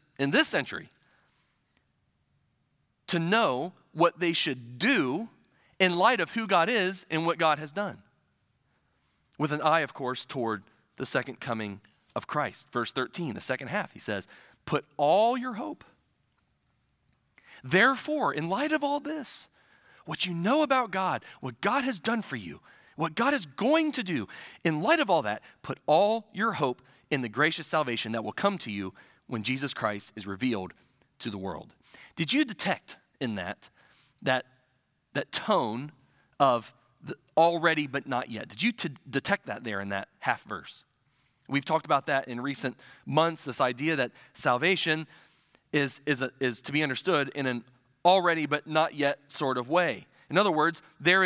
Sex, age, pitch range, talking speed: male, 30-49, 130-180 Hz, 170 wpm